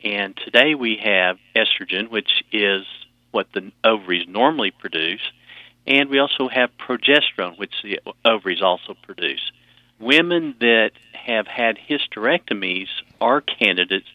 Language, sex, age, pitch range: English, male, 50-69, 100-120 Hz